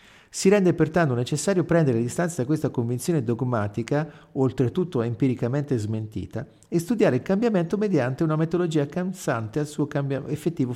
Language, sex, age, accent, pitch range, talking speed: Italian, male, 50-69, native, 125-175 Hz, 140 wpm